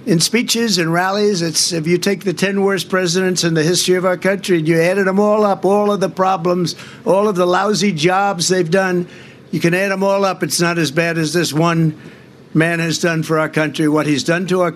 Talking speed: 240 wpm